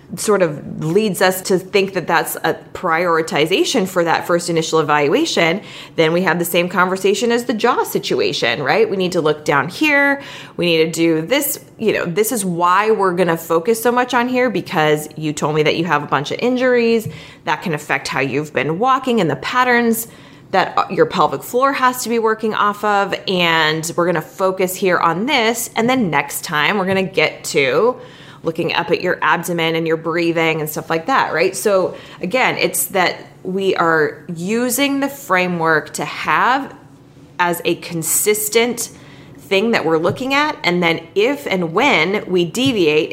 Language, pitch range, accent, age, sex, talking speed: English, 160-225 Hz, American, 20-39, female, 185 wpm